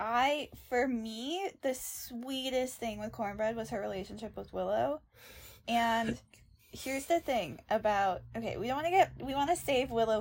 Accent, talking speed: American, 170 wpm